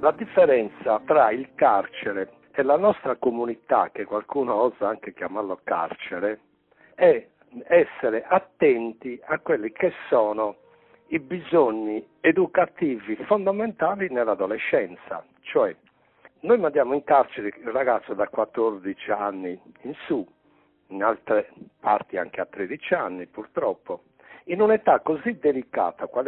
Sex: male